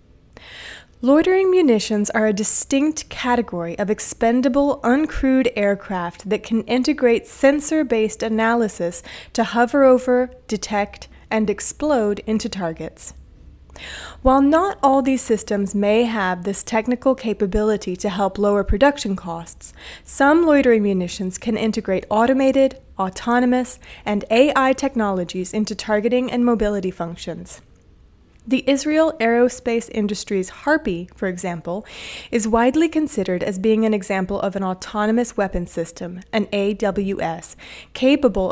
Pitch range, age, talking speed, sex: 190-250 Hz, 20-39, 115 wpm, female